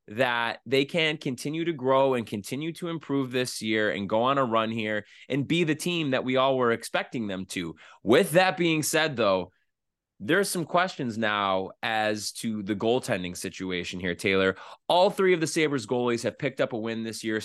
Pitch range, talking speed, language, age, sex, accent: 105-140 Hz, 200 wpm, English, 20-39, male, American